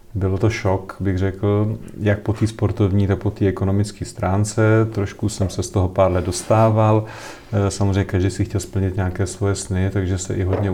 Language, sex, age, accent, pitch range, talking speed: Czech, male, 40-59, native, 95-105 Hz, 190 wpm